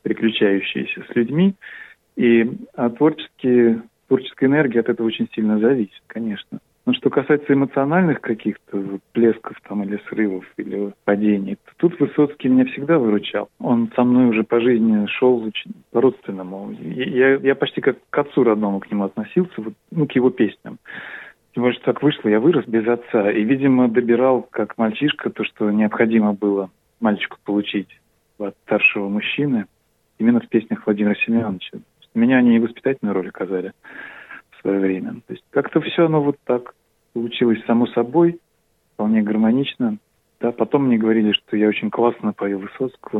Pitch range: 105-130 Hz